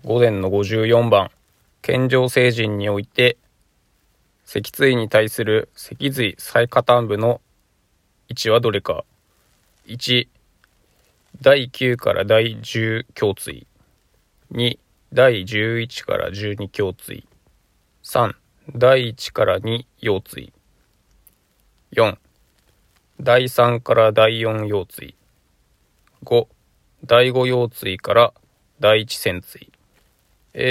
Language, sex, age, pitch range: Japanese, male, 20-39, 110-130 Hz